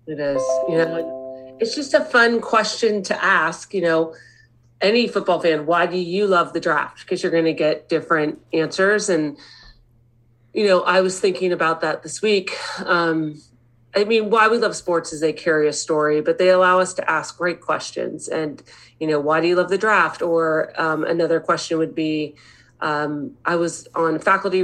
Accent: American